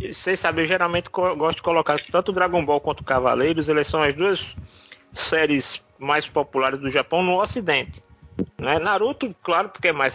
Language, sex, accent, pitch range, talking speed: Portuguese, male, Brazilian, 150-215 Hz, 175 wpm